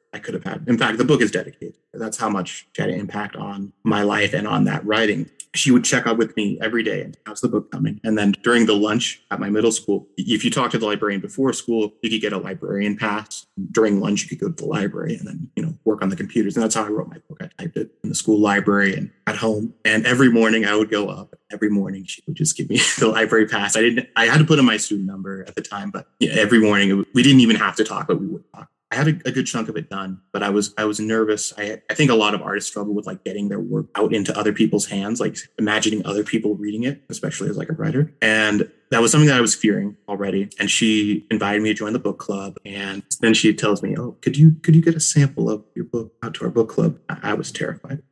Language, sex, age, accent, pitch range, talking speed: English, male, 20-39, American, 105-130 Hz, 280 wpm